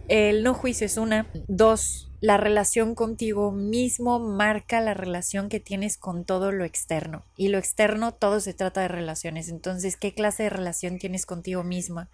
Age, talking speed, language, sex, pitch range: 20-39, 175 wpm, Spanish, female, 185-245 Hz